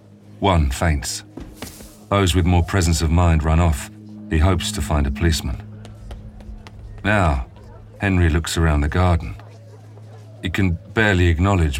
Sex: male